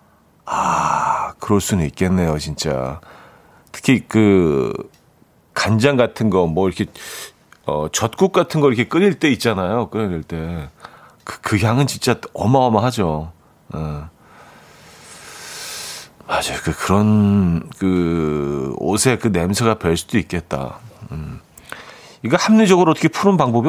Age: 40-59